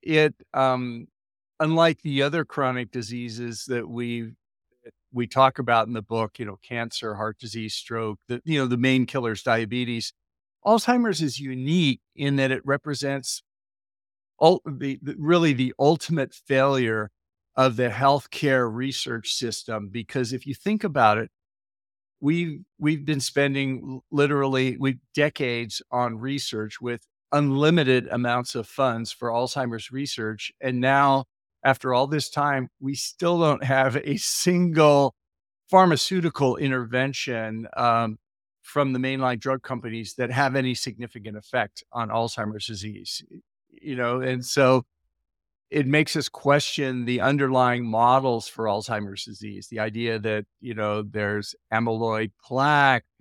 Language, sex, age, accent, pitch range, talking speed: English, male, 50-69, American, 115-140 Hz, 135 wpm